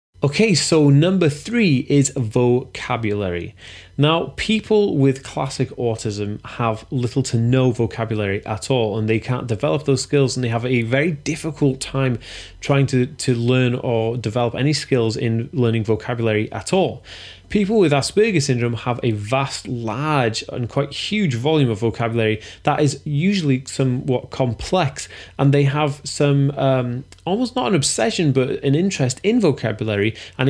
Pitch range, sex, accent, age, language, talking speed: 115-145 Hz, male, British, 20-39, English, 155 wpm